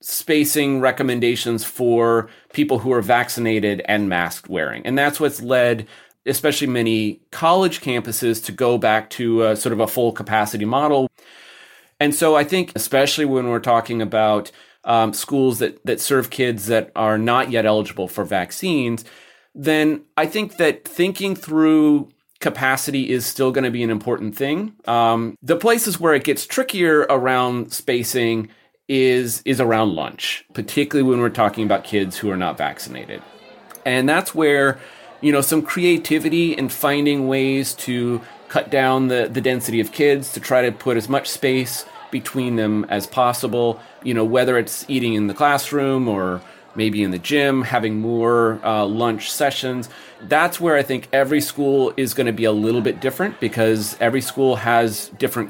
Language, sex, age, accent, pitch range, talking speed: English, male, 30-49, American, 115-140 Hz, 170 wpm